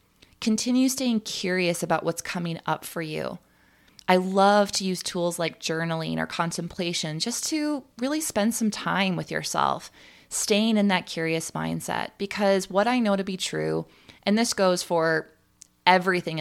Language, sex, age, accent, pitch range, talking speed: English, female, 20-39, American, 165-205 Hz, 155 wpm